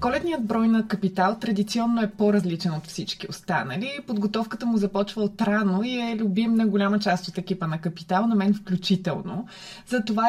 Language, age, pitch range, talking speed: Bulgarian, 20-39, 190-230 Hz, 165 wpm